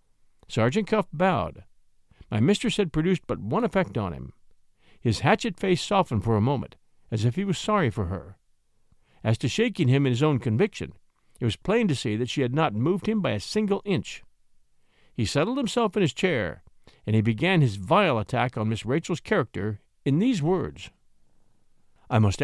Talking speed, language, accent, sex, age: 185 wpm, English, American, male, 60-79